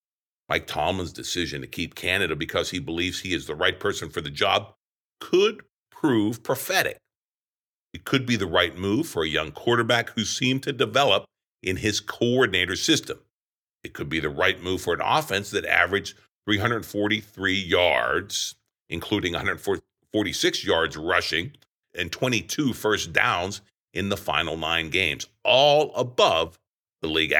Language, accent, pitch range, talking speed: English, American, 95-120 Hz, 150 wpm